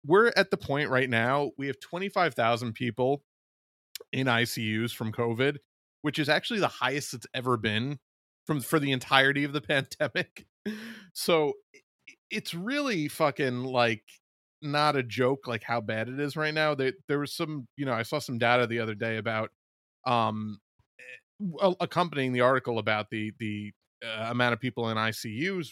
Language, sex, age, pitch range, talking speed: English, male, 30-49, 110-140 Hz, 165 wpm